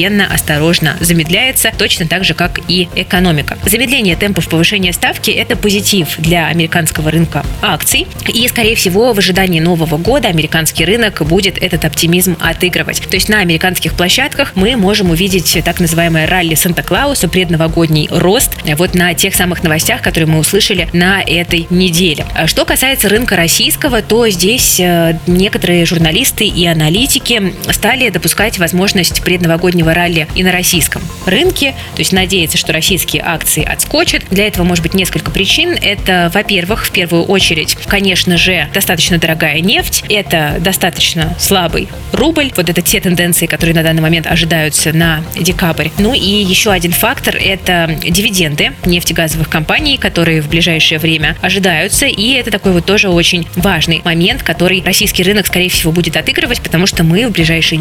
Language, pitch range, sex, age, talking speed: Russian, 165-195 Hz, female, 20-39, 150 wpm